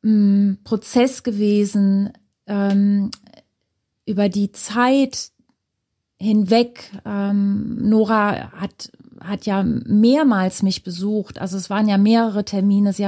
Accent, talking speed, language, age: German, 100 wpm, German, 30-49